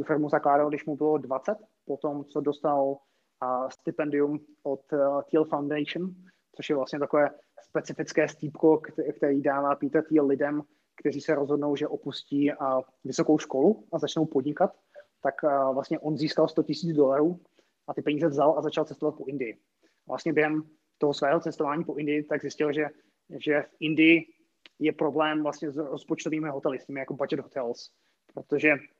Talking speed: 165 wpm